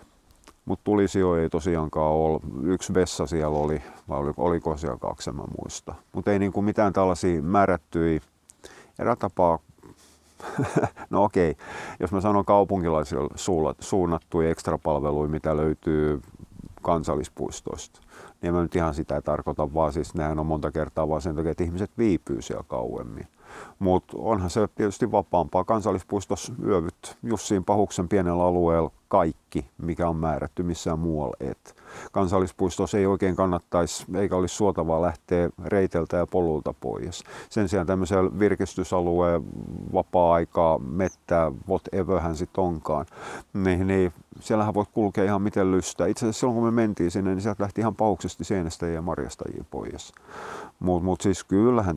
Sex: male